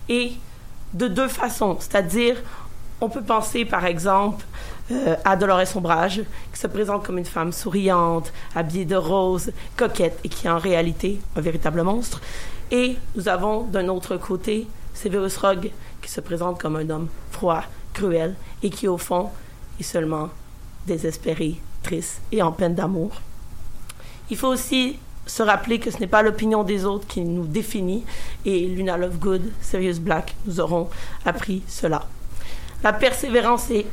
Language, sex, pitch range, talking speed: French, female, 175-215 Hz, 155 wpm